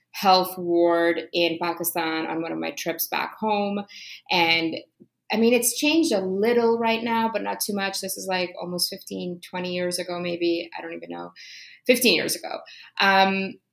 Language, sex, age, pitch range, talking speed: English, female, 20-39, 170-200 Hz, 180 wpm